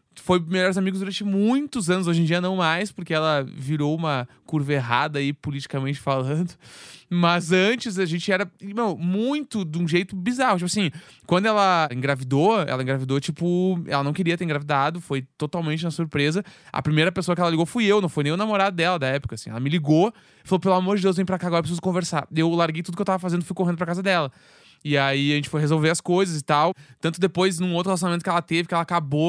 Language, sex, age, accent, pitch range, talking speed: Portuguese, male, 20-39, Brazilian, 150-185 Hz, 230 wpm